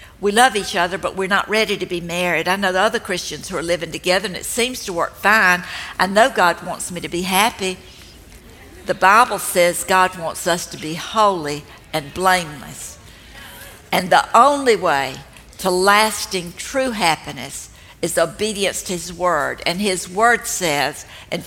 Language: English